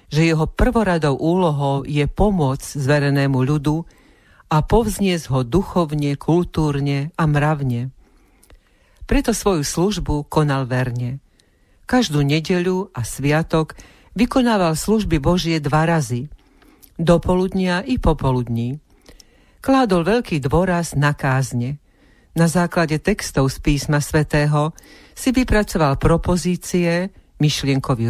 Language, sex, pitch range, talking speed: Slovak, female, 145-180 Hz, 100 wpm